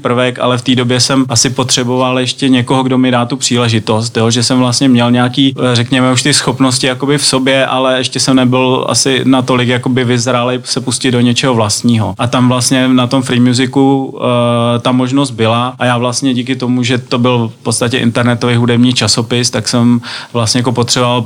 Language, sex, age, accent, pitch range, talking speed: Czech, male, 30-49, native, 115-125 Hz, 190 wpm